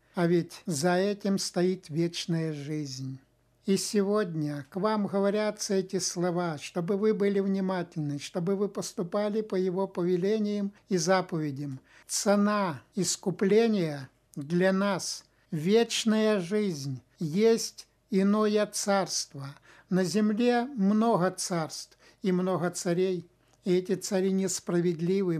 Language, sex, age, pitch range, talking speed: Russian, male, 60-79, 170-205 Hz, 105 wpm